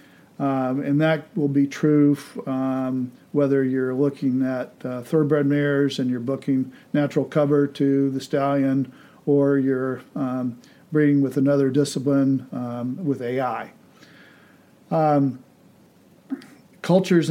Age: 50-69